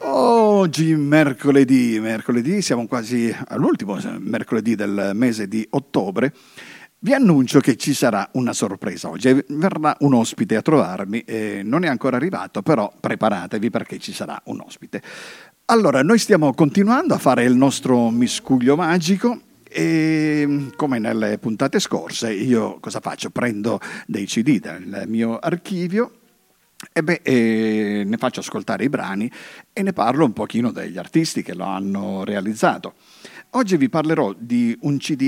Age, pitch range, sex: 50-69, 115-165 Hz, male